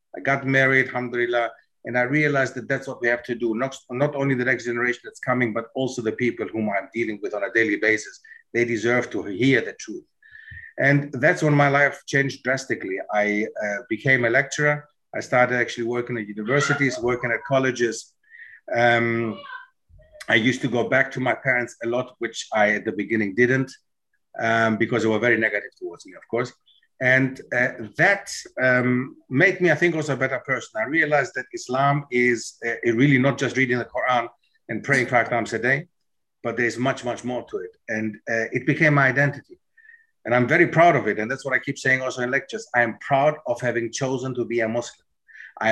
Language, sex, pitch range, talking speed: English, male, 120-140 Hz, 205 wpm